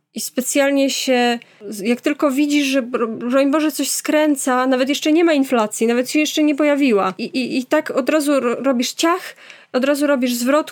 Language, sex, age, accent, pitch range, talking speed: Polish, female, 20-39, native, 230-275 Hz, 185 wpm